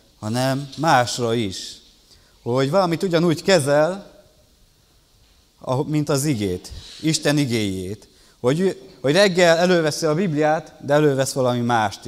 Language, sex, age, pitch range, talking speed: Hungarian, male, 30-49, 115-150 Hz, 105 wpm